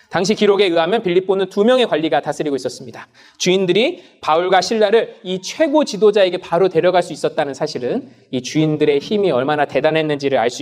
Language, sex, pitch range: Korean, male, 185-265 Hz